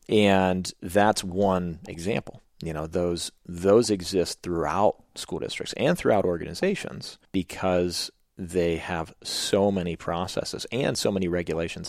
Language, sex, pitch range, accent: English, male, 85-95 Hz, American